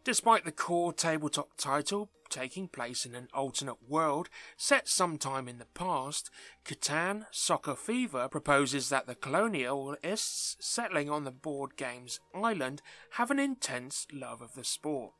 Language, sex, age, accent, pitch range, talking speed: English, male, 30-49, British, 125-180 Hz, 140 wpm